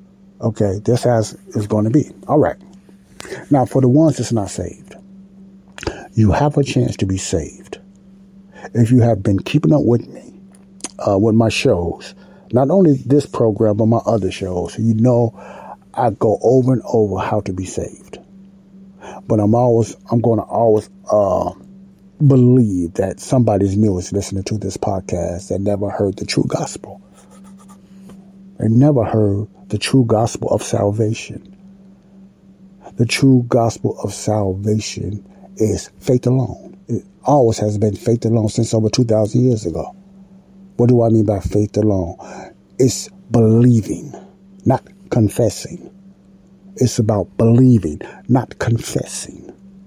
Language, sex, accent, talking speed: English, male, American, 145 wpm